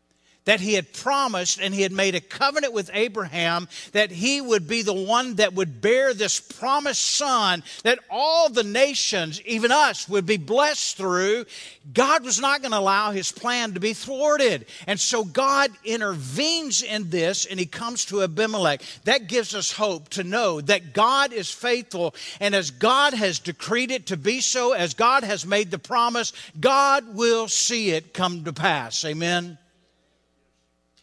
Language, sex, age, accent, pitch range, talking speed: English, male, 50-69, American, 170-235 Hz, 170 wpm